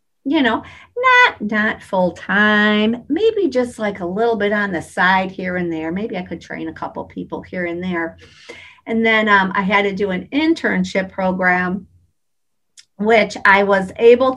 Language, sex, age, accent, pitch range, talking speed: English, female, 50-69, American, 180-225 Hz, 175 wpm